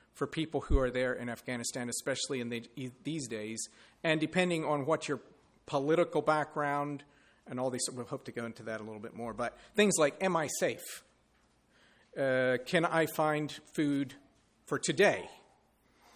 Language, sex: English, male